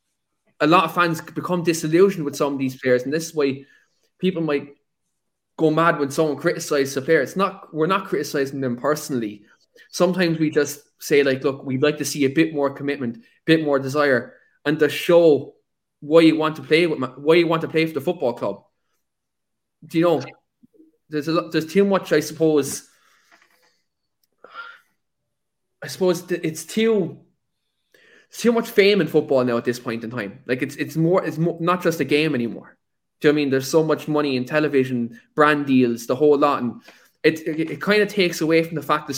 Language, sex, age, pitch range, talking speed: English, male, 20-39, 140-175 Hz, 200 wpm